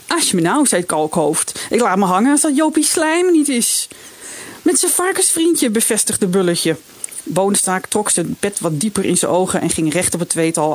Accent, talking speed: Dutch, 200 wpm